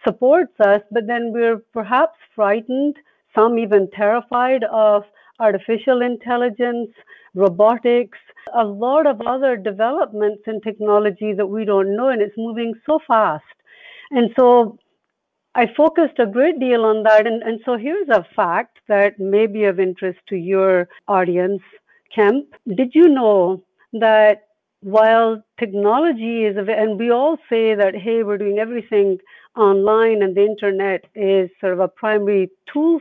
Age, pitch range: 60-79, 205-245 Hz